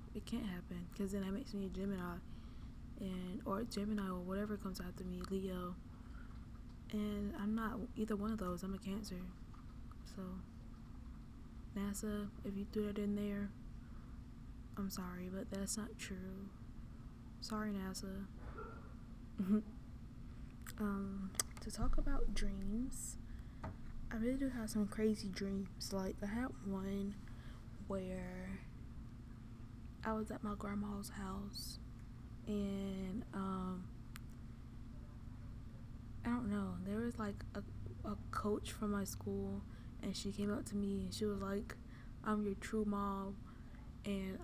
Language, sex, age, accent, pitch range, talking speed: English, female, 10-29, American, 180-205 Hz, 130 wpm